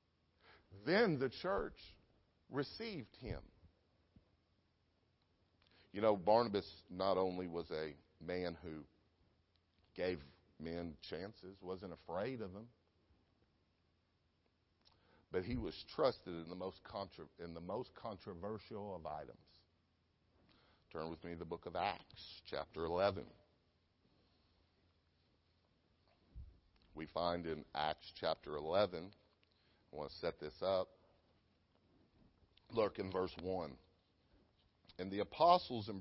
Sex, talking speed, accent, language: male, 105 wpm, American, English